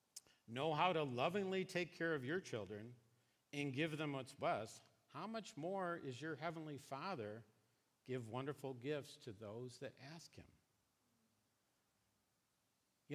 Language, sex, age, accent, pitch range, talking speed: English, male, 50-69, American, 120-150 Hz, 135 wpm